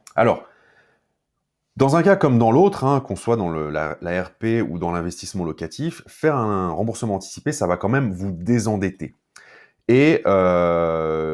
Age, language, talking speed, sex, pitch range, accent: 30-49, French, 165 wpm, male, 85-115 Hz, French